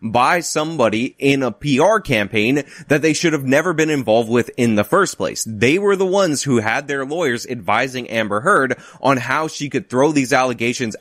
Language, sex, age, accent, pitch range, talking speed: English, male, 20-39, American, 120-160 Hz, 195 wpm